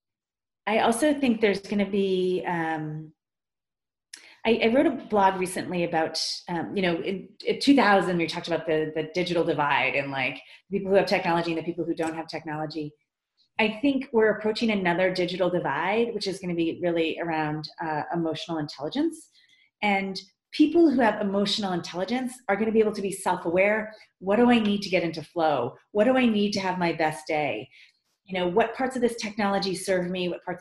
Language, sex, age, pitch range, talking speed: English, female, 30-49, 160-215 Hz, 190 wpm